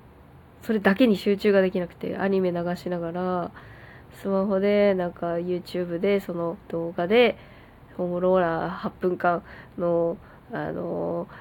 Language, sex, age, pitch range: Japanese, female, 20-39, 180-230 Hz